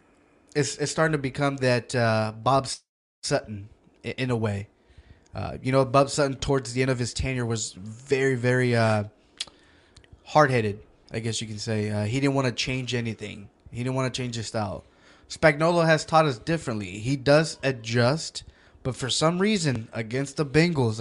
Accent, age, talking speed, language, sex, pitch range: American, 20-39, 175 wpm, English, male, 115-140 Hz